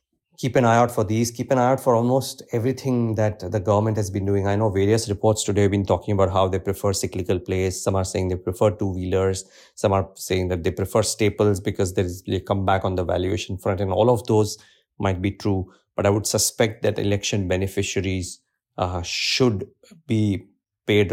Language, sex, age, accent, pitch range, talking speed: English, male, 30-49, Indian, 95-110 Hz, 205 wpm